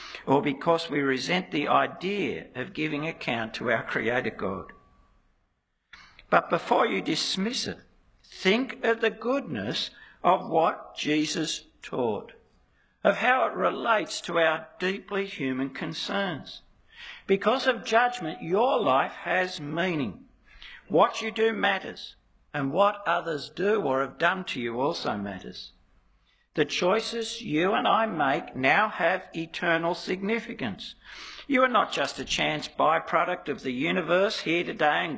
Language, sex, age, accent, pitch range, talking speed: English, male, 60-79, Australian, 145-220 Hz, 135 wpm